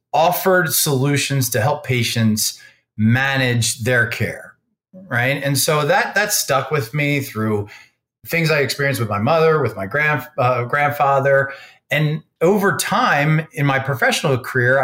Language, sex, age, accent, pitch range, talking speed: English, male, 30-49, American, 120-150 Hz, 140 wpm